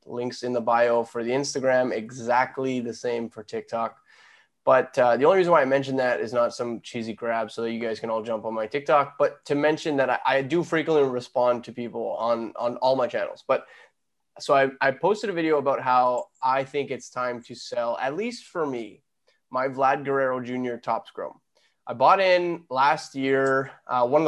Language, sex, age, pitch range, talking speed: English, male, 20-39, 120-140 Hz, 210 wpm